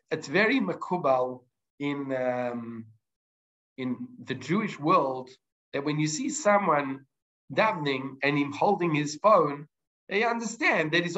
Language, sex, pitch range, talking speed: English, male, 150-210 Hz, 130 wpm